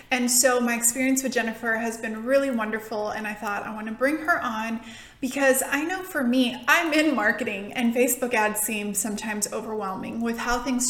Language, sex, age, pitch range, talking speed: English, female, 20-39, 225-260 Hz, 195 wpm